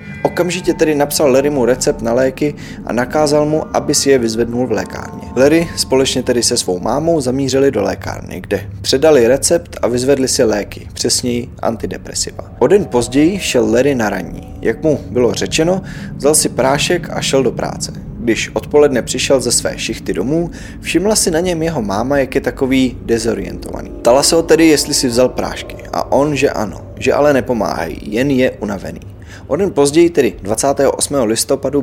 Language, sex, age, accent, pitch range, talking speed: Czech, male, 20-39, native, 115-150 Hz, 175 wpm